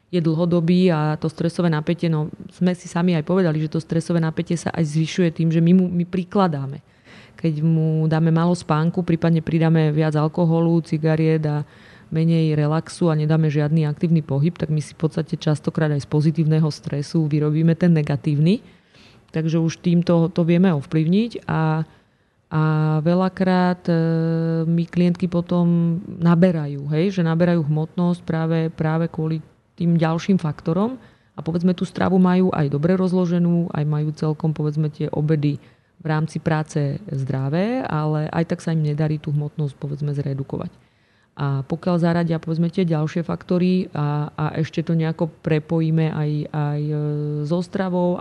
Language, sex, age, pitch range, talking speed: Slovak, female, 30-49, 155-170 Hz, 155 wpm